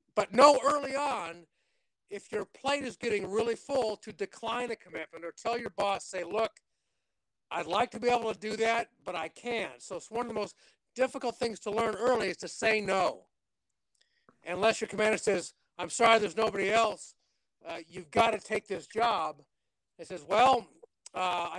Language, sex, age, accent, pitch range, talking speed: English, male, 50-69, American, 195-245 Hz, 185 wpm